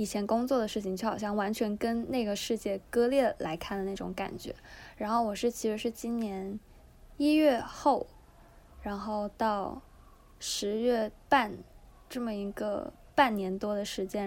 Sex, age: female, 20-39